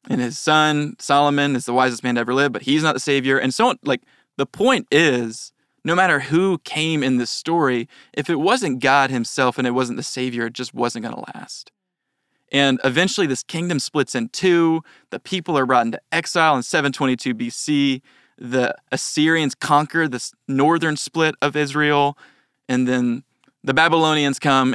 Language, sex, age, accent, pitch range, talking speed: English, male, 20-39, American, 125-145 Hz, 180 wpm